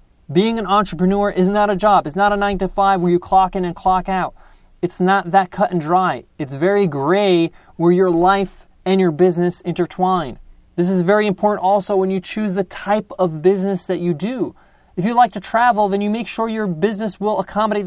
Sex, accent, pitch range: male, American, 180-210 Hz